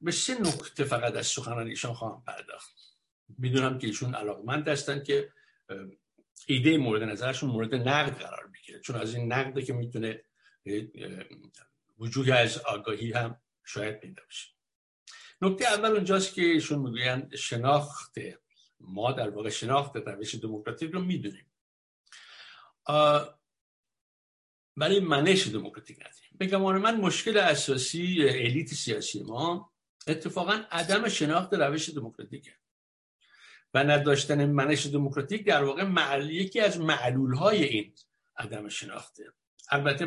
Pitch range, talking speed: 115-155 Hz, 120 wpm